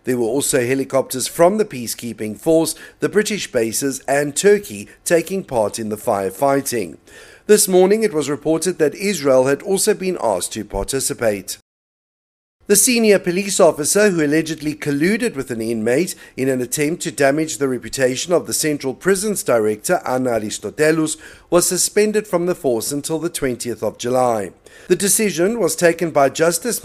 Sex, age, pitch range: male, 50-69, 130-185 Hz